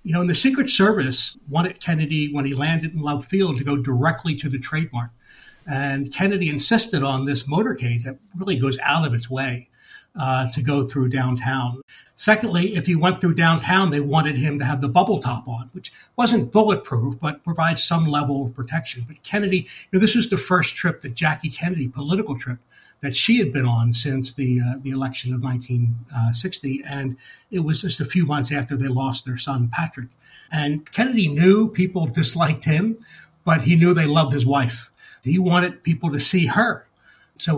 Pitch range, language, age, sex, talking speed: 135-170 Hz, English, 60-79, male, 190 wpm